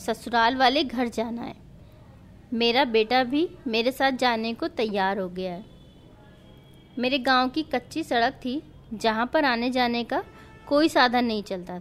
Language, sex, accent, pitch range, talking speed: Hindi, female, native, 220-290 Hz, 160 wpm